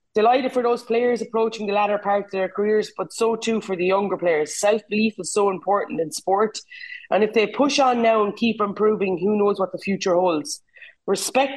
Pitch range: 180-215 Hz